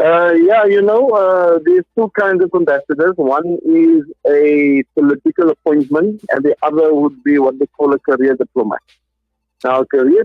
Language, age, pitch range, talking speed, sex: English, 50-69, 135-170 Hz, 170 wpm, male